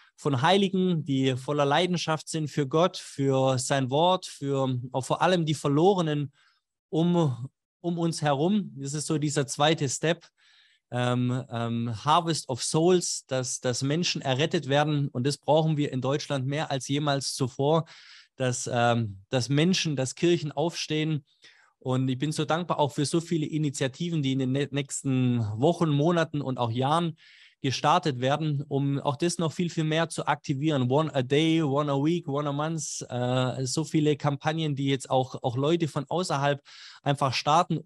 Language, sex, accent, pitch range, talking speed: German, male, German, 130-160 Hz, 165 wpm